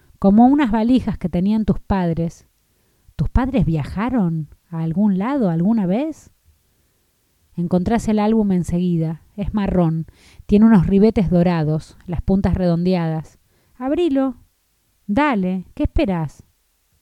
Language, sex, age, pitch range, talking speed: Spanish, female, 20-39, 165-205 Hz, 115 wpm